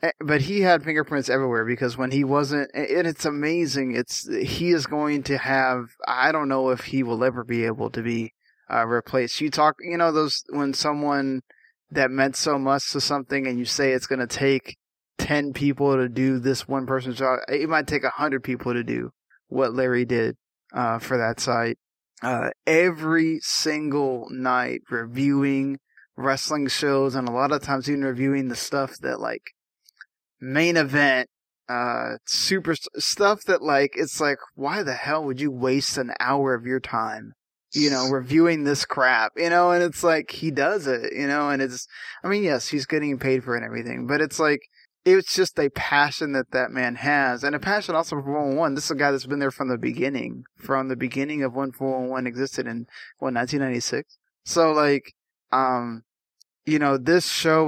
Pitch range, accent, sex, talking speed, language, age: 130-150 Hz, American, male, 190 wpm, English, 20-39